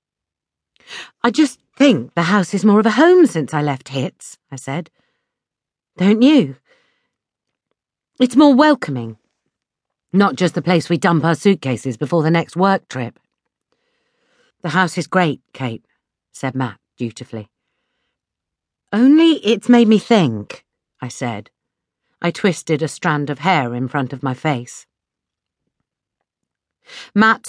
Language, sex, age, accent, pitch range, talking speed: English, female, 50-69, British, 140-210 Hz, 135 wpm